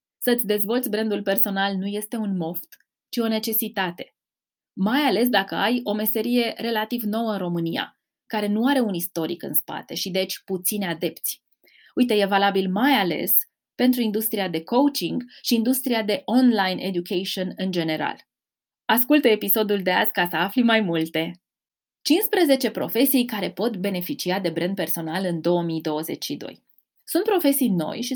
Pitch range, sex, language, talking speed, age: 185-250 Hz, female, Romanian, 150 wpm, 20-39